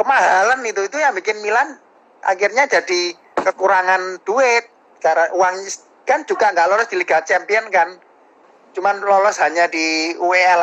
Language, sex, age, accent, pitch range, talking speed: Indonesian, male, 30-49, native, 165-215 Hz, 140 wpm